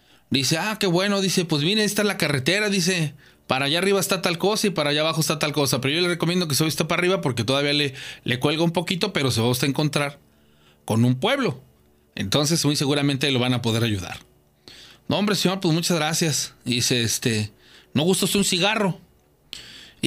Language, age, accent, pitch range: Spanish, 30-49, Mexican, 115-170 Hz